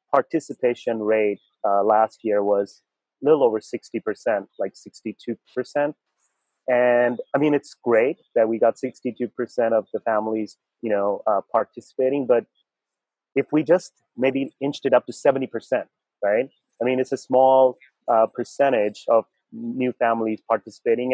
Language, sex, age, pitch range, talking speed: English, male, 30-49, 115-135 Hz, 155 wpm